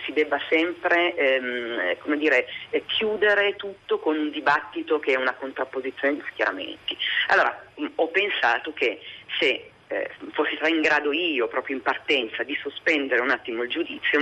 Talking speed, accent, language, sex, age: 155 wpm, native, Italian, female, 40-59